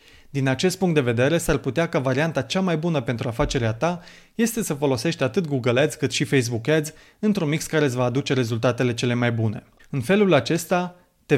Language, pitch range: Romanian, 125-165 Hz